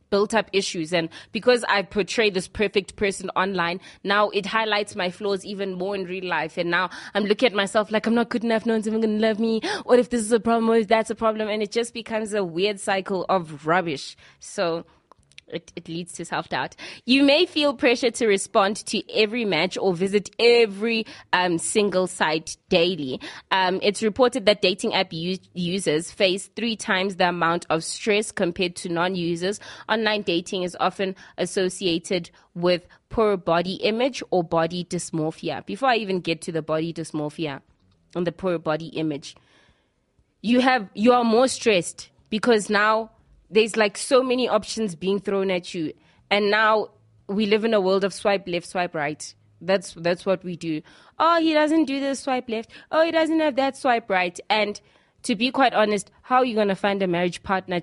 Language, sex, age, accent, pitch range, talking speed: English, female, 20-39, South African, 180-220 Hz, 190 wpm